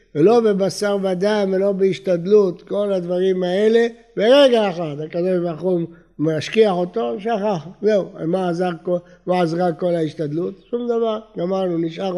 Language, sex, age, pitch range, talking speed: Hebrew, male, 60-79, 160-220 Hz, 135 wpm